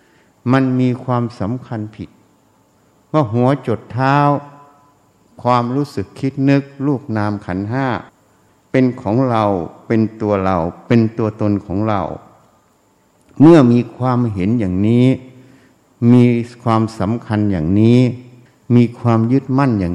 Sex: male